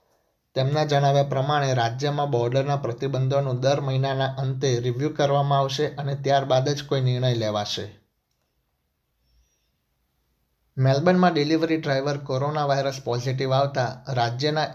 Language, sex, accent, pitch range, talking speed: Gujarati, male, native, 120-140 Hz, 105 wpm